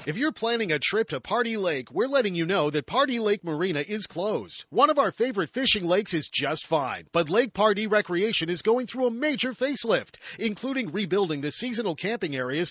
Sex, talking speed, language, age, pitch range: male, 205 wpm, English, 40-59, 170-230 Hz